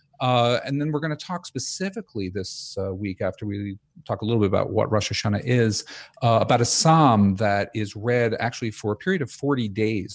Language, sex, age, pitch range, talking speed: English, male, 40-59, 100-130 Hz, 215 wpm